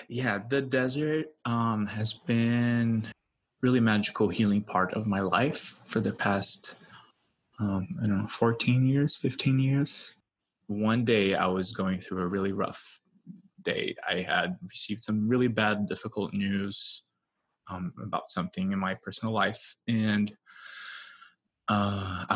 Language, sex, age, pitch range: English, male, 20-39, 95-120 Hz